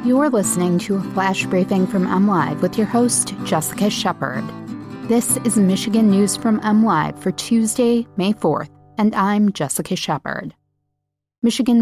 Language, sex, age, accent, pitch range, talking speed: English, female, 30-49, American, 165-200 Hz, 140 wpm